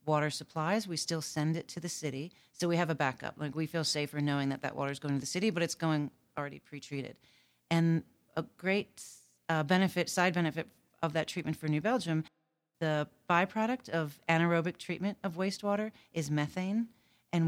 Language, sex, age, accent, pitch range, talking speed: English, female, 40-59, American, 145-175 Hz, 190 wpm